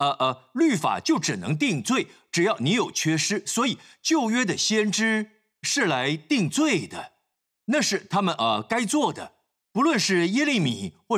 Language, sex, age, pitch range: Chinese, male, 50-69, 155-240 Hz